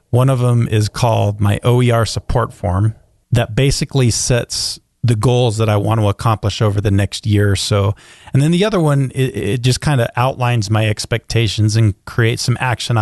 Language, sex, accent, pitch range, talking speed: English, male, American, 105-120 Hz, 195 wpm